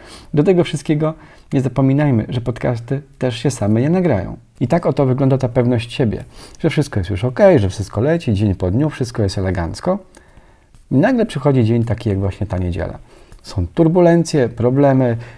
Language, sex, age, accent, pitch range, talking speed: Polish, male, 40-59, native, 105-145 Hz, 175 wpm